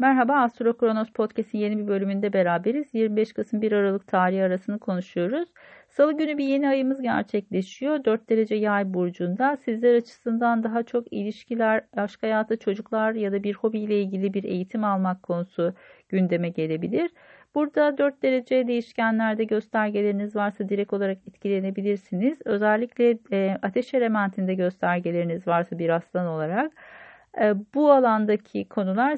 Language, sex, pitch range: Turkish, female, 195-235 Hz